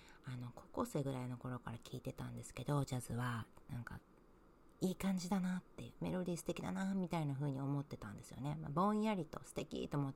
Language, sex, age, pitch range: Japanese, female, 40-59, 125-185 Hz